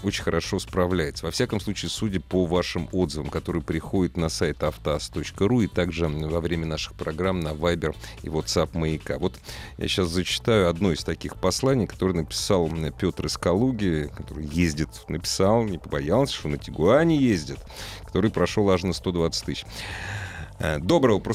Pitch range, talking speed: 85-110 Hz, 160 wpm